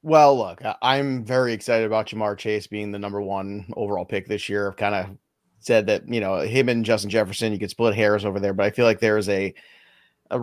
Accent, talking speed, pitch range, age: American, 235 wpm, 105-130 Hz, 30-49